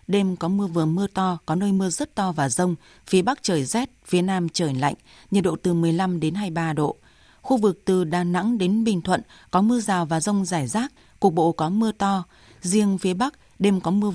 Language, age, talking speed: Vietnamese, 20-39, 230 wpm